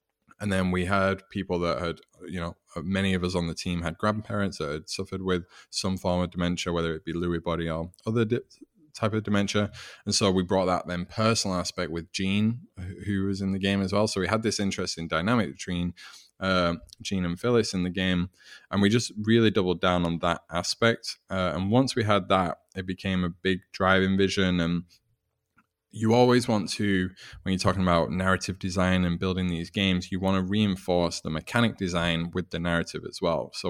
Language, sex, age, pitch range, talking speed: Danish, male, 20-39, 85-100 Hz, 205 wpm